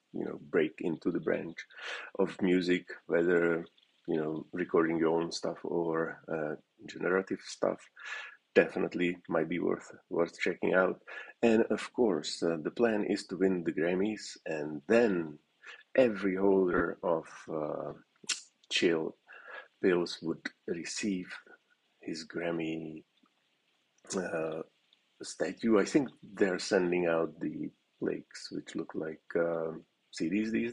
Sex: male